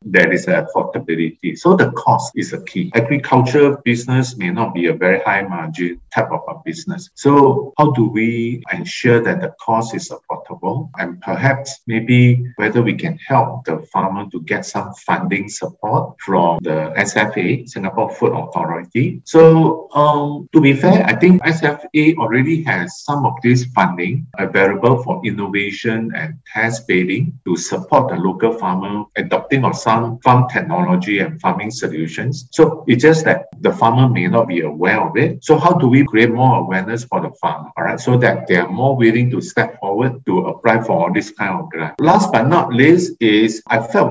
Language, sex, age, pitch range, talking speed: English, male, 50-69, 110-150 Hz, 175 wpm